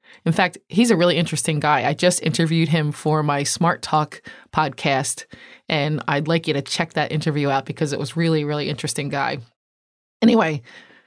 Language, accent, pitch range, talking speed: English, American, 150-180 Hz, 180 wpm